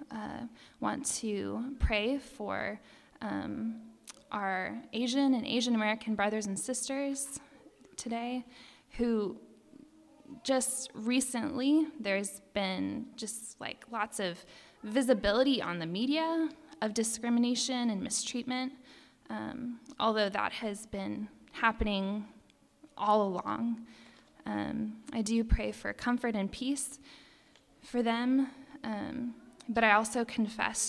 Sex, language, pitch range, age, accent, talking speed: female, English, 205-250 Hz, 10-29, American, 110 wpm